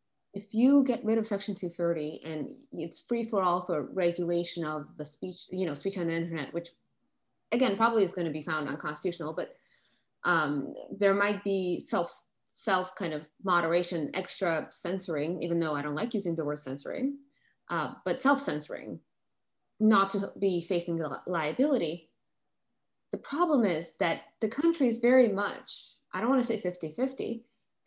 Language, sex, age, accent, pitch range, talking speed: English, female, 20-39, American, 165-205 Hz, 170 wpm